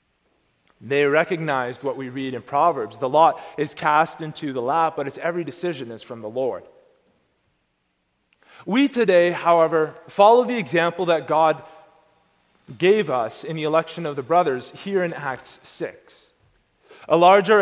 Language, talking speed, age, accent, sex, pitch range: English, 150 wpm, 30-49, American, male, 145-195 Hz